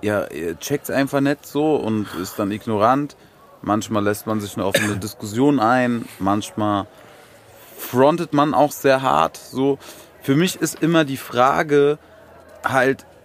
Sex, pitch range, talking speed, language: male, 120-150 Hz, 145 wpm, German